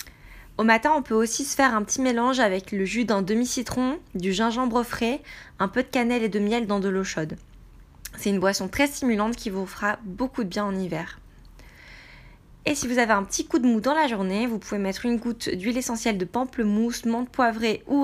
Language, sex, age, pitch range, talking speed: French, female, 20-39, 200-245 Hz, 220 wpm